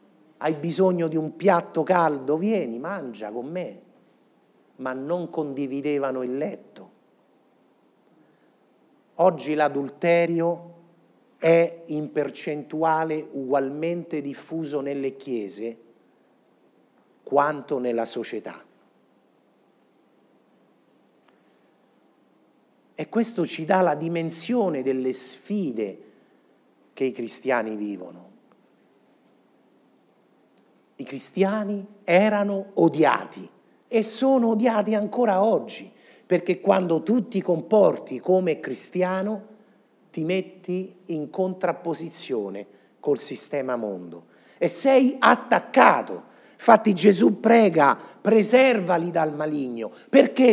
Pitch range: 150-205 Hz